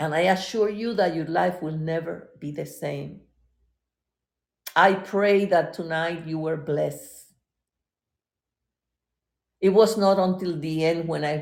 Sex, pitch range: female, 130-205 Hz